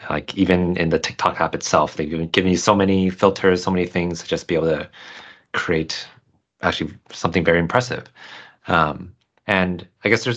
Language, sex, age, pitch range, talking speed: English, male, 30-49, 85-105 Hz, 180 wpm